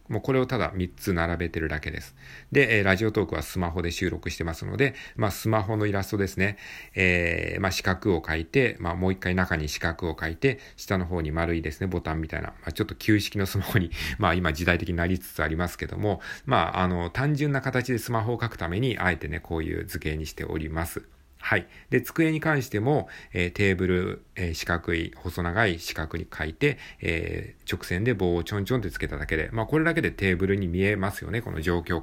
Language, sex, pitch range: Japanese, male, 85-110 Hz